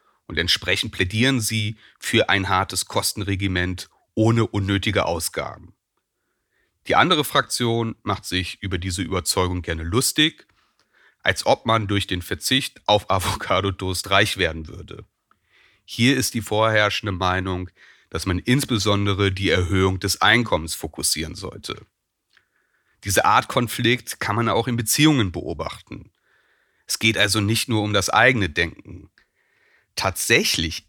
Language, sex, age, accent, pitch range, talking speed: German, male, 40-59, German, 95-115 Hz, 125 wpm